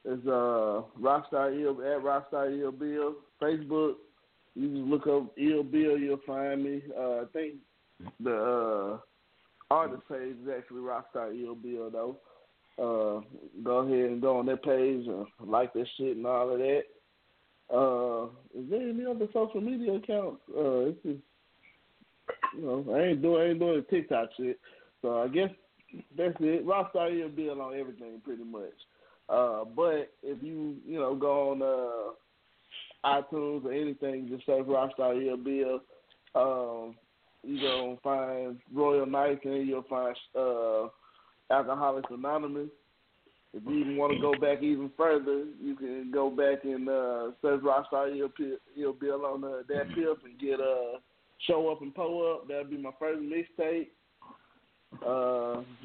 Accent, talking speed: American, 160 wpm